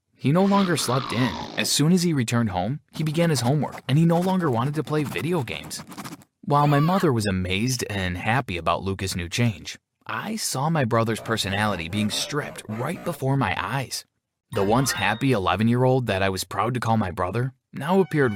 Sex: male